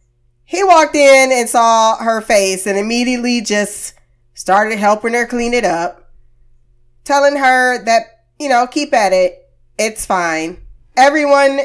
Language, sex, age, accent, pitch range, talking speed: English, female, 20-39, American, 190-255 Hz, 140 wpm